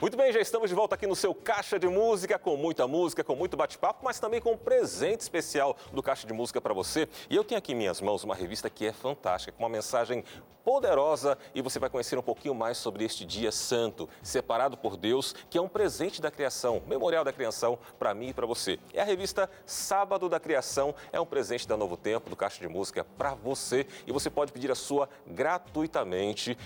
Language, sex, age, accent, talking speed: Portuguese, male, 40-59, Brazilian, 225 wpm